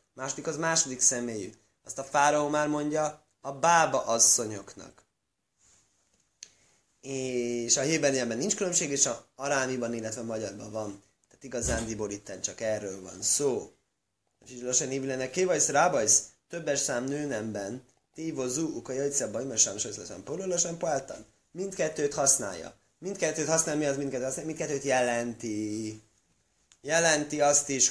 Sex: male